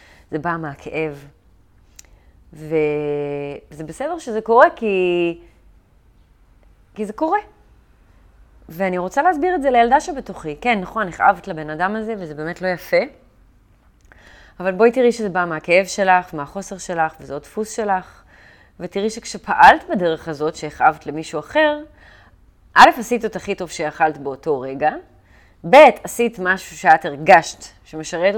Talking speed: 130 wpm